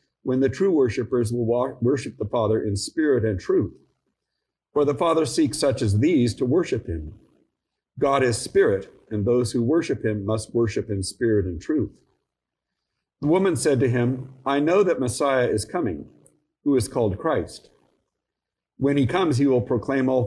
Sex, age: male, 50-69